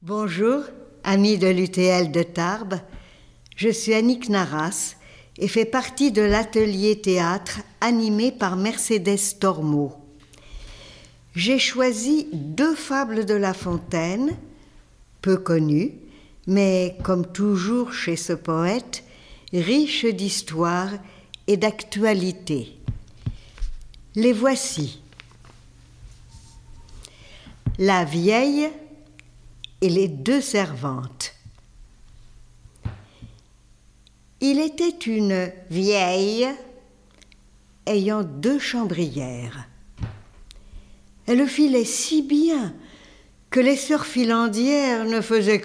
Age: 60-79